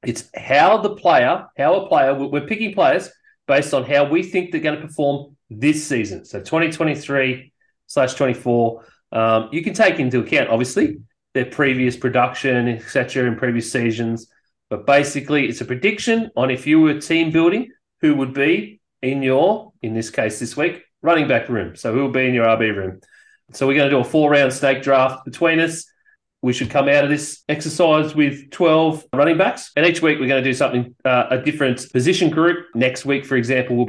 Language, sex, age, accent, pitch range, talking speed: English, male, 30-49, Australian, 115-145 Hz, 195 wpm